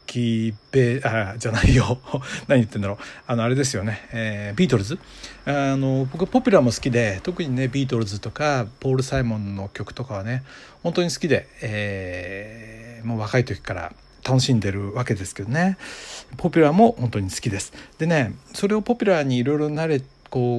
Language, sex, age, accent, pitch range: Japanese, male, 60-79, native, 110-160 Hz